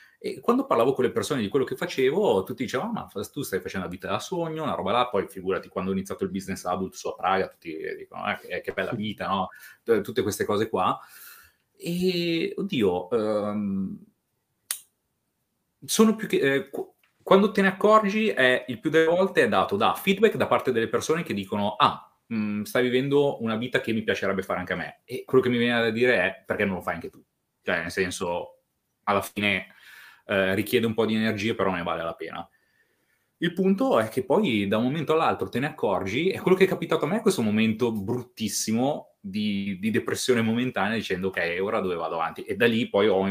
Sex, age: male, 30-49